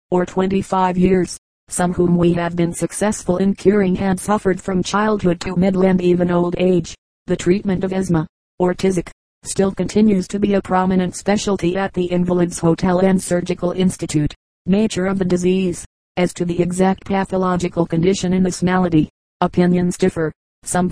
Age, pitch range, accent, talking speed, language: 40-59, 175-190 Hz, American, 165 wpm, English